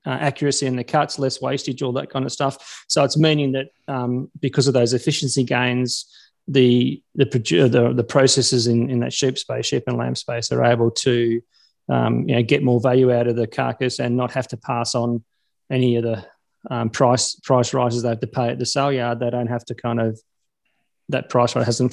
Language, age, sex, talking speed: English, 30-49, male, 220 wpm